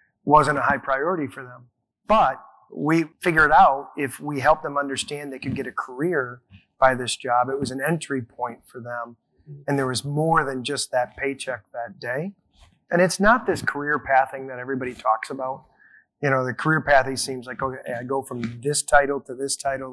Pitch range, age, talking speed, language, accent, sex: 125-140 Hz, 30-49, 200 wpm, English, American, male